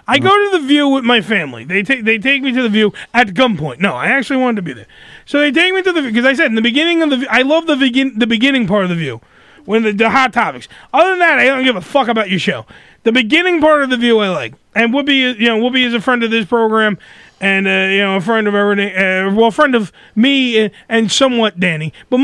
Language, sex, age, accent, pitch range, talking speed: English, male, 30-49, American, 215-285 Hz, 285 wpm